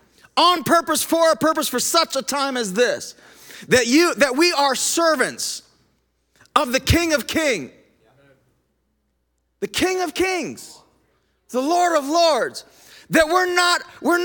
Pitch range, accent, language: 205-310 Hz, American, English